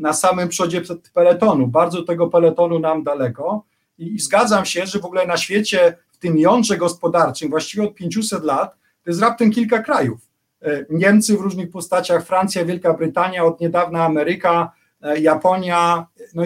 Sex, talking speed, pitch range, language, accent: male, 155 wpm, 160-190 Hz, Polish, native